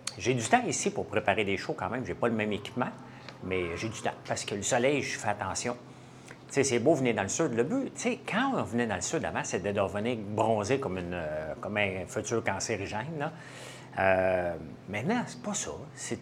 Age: 60-79